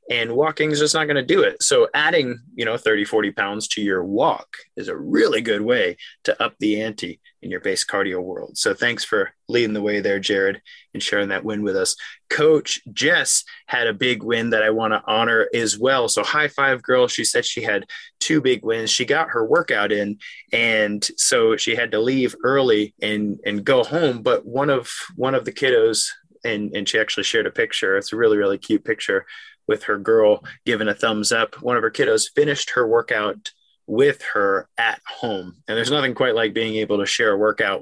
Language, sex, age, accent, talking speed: English, male, 20-39, American, 215 wpm